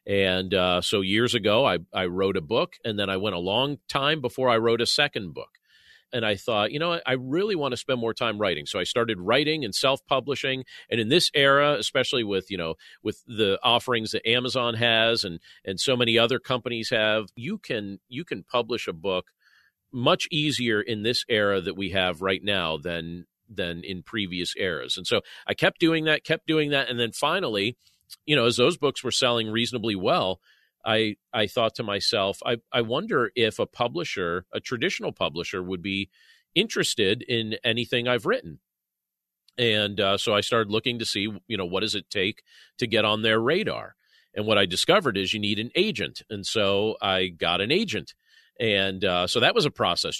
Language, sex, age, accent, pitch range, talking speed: English, male, 40-59, American, 100-125 Hz, 205 wpm